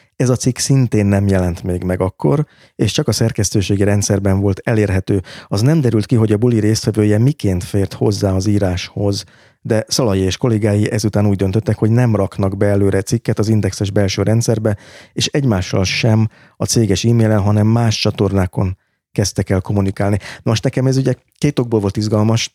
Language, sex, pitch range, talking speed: Hungarian, male, 100-115 Hz, 175 wpm